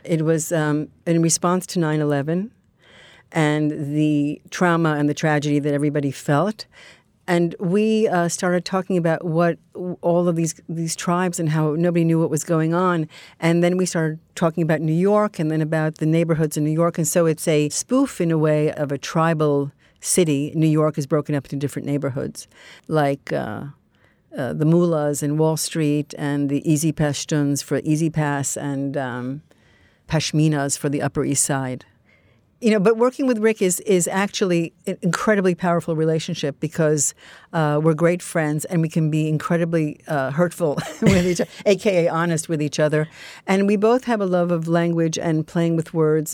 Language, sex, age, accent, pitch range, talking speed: English, female, 50-69, American, 150-170 Hz, 180 wpm